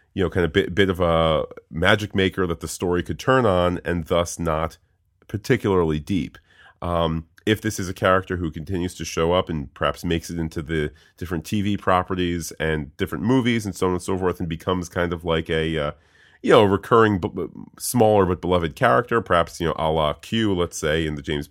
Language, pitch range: English, 80-100 Hz